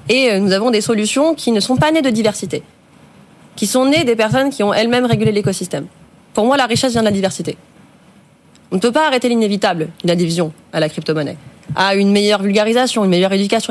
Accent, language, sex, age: French, French, female, 20-39